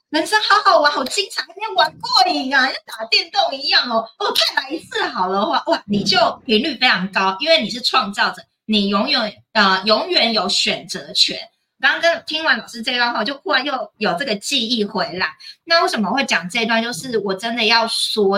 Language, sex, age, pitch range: Chinese, female, 30-49, 190-235 Hz